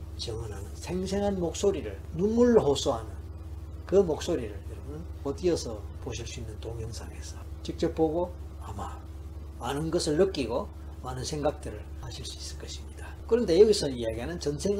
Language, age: Korean, 40-59